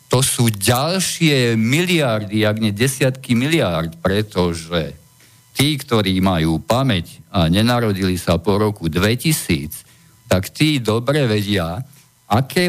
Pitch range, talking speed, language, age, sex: 100-135 Hz, 115 wpm, Slovak, 50-69, male